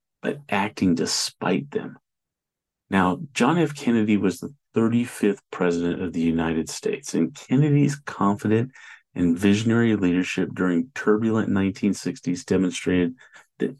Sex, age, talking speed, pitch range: male, 40-59, 115 wpm, 85-110 Hz